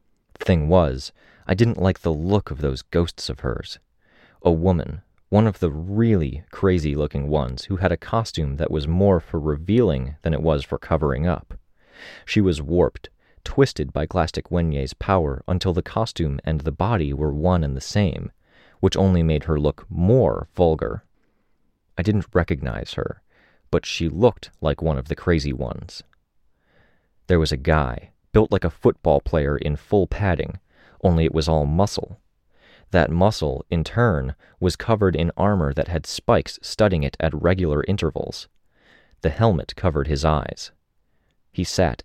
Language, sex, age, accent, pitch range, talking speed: English, male, 30-49, American, 75-95 Hz, 165 wpm